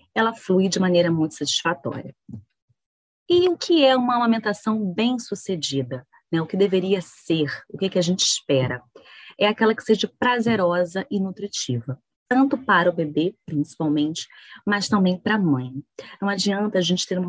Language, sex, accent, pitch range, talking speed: Portuguese, female, Brazilian, 155-215 Hz, 165 wpm